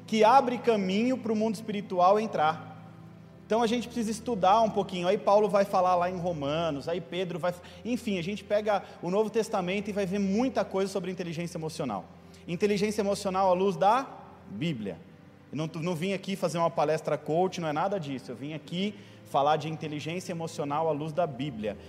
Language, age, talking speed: Portuguese, 30-49, 190 wpm